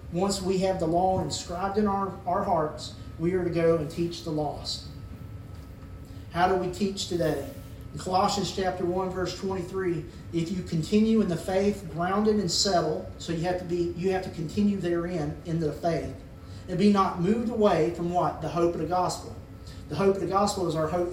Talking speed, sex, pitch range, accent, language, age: 205 wpm, male, 155-190 Hz, American, English, 40-59